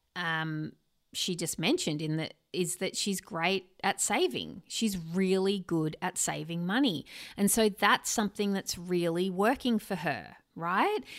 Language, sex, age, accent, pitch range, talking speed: English, female, 30-49, Australian, 175-225 Hz, 150 wpm